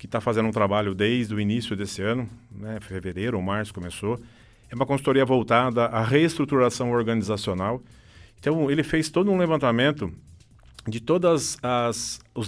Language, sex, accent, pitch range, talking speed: English, male, Brazilian, 115-140 Hz, 155 wpm